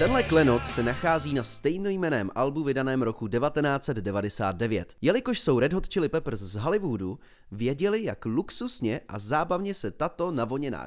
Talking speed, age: 145 wpm, 30-49